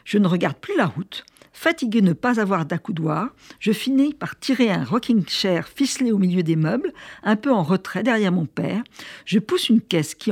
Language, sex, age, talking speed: French, female, 60-79, 210 wpm